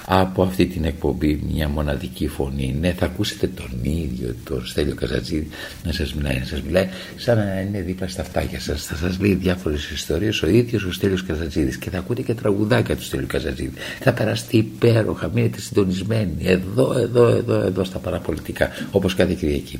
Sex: male